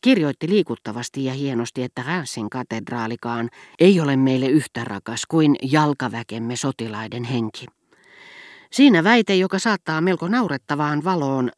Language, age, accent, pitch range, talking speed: Finnish, 40-59, native, 120-170 Hz, 120 wpm